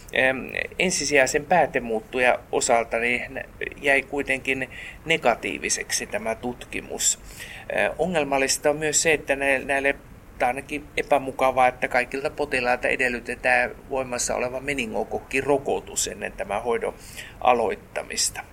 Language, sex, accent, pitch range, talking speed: Finnish, male, native, 125-145 Hz, 95 wpm